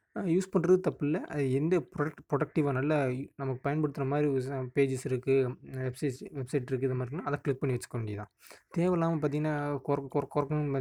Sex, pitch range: male, 130-150 Hz